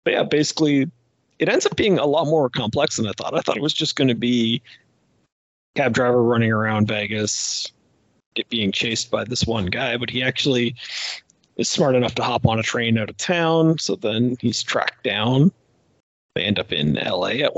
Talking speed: 205 wpm